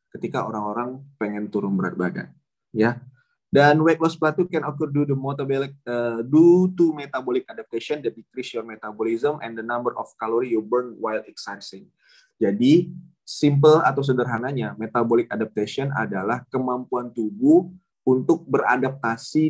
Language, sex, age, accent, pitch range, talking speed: Indonesian, male, 20-39, native, 115-150 Hz, 135 wpm